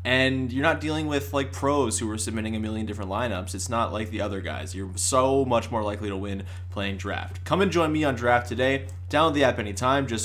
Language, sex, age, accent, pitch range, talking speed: English, male, 20-39, American, 95-120 Hz, 240 wpm